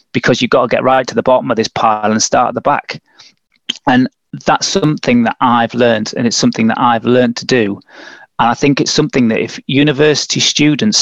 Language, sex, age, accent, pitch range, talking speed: English, male, 30-49, British, 110-135 Hz, 220 wpm